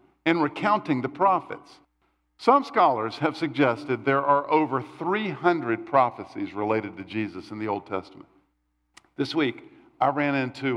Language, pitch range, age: English, 120-170 Hz, 50-69